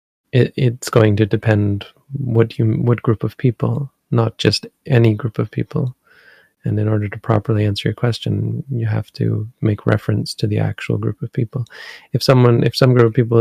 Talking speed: 190 wpm